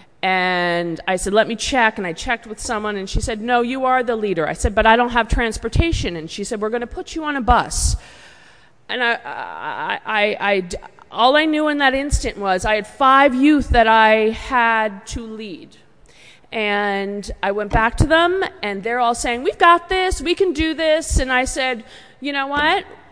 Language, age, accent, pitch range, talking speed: English, 40-59, American, 195-270 Hz, 200 wpm